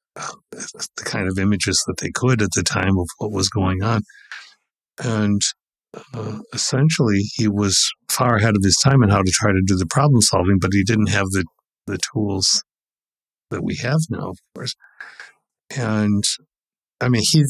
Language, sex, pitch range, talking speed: English, male, 95-120 Hz, 175 wpm